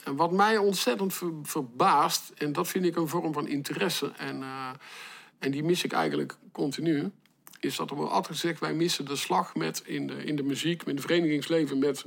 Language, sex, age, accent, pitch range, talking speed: Dutch, male, 50-69, Dutch, 140-195 Hz, 215 wpm